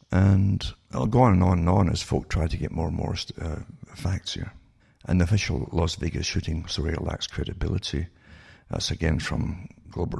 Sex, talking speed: male, 195 wpm